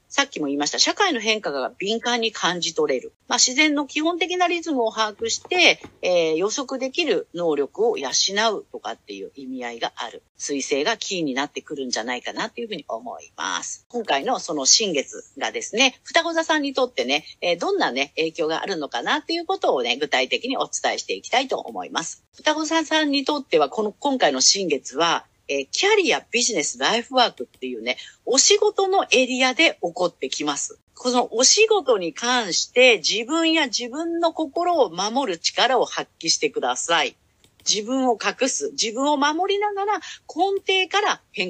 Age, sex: 40-59, female